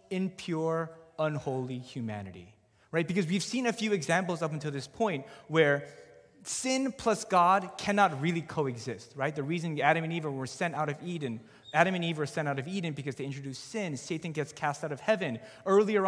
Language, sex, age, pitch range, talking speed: English, male, 30-49, 135-180 Hz, 195 wpm